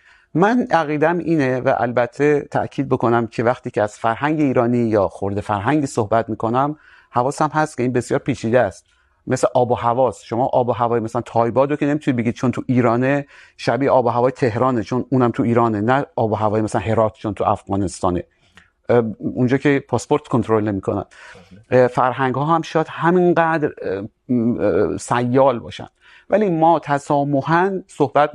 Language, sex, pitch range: Urdu, male, 115-140 Hz